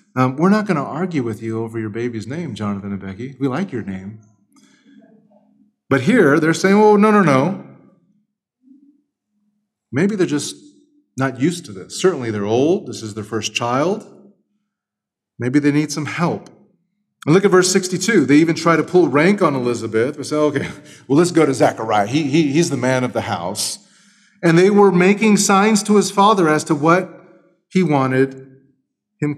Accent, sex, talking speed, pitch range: American, male, 180 wpm, 125-185 Hz